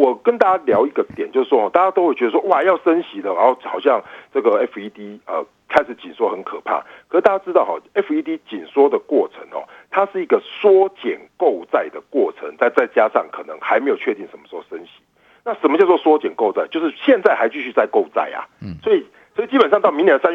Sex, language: male, Chinese